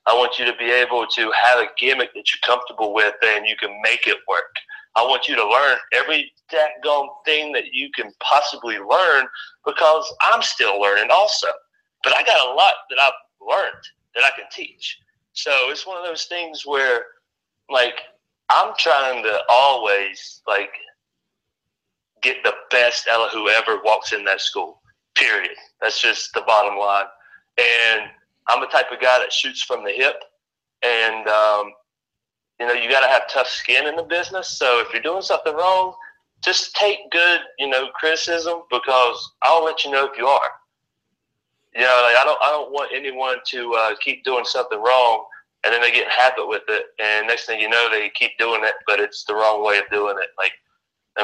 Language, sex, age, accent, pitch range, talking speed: English, male, 30-49, American, 115-175 Hz, 190 wpm